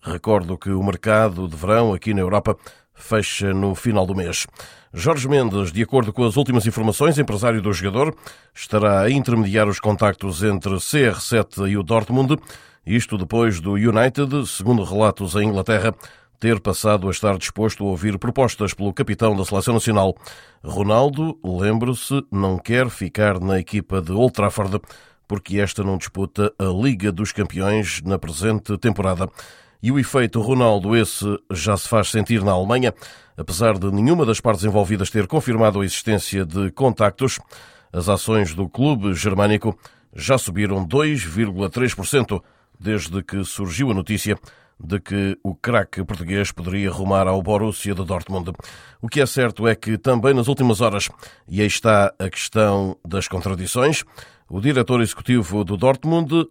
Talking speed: 155 wpm